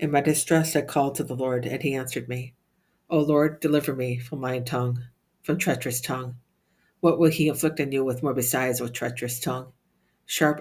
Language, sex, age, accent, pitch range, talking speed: English, female, 60-79, American, 125-145 Hz, 200 wpm